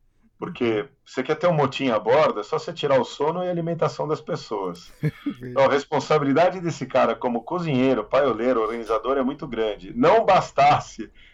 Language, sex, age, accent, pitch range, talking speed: Portuguese, male, 40-59, Brazilian, 120-155 Hz, 175 wpm